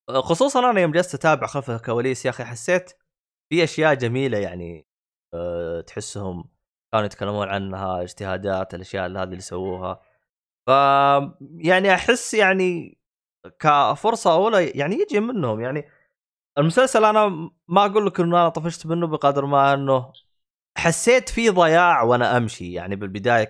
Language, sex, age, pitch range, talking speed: Arabic, male, 20-39, 100-165 Hz, 135 wpm